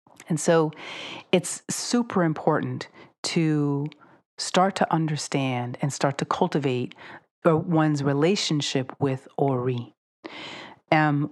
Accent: American